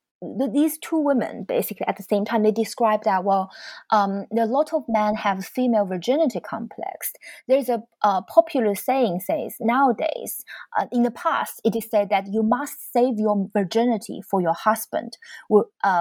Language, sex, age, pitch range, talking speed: English, female, 20-39, 195-235 Hz, 170 wpm